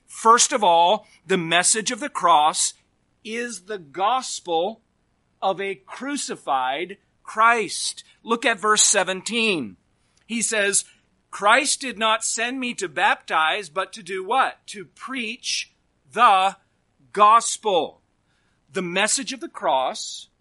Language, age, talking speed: English, 40-59, 120 wpm